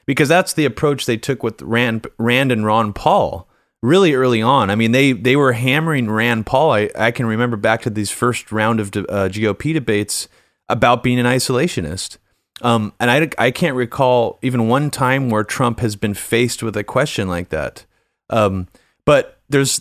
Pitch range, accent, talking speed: 110-135 Hz, American, 190 wpm